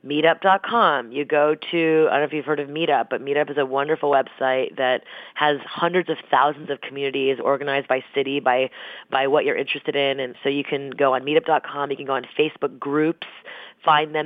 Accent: American